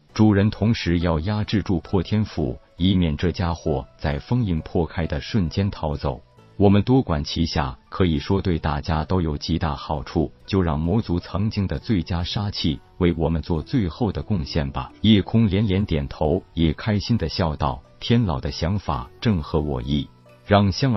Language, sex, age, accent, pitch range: Chinese, male, 50-69, native, 75-105 Hz